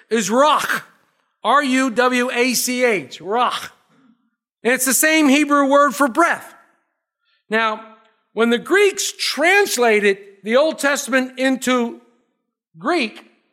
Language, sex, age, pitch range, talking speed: English, male, 50-69, 210-285 Hz, 100 wpm